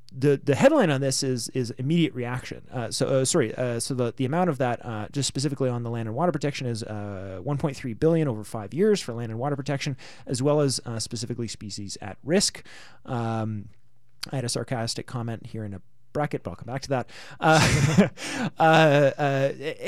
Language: English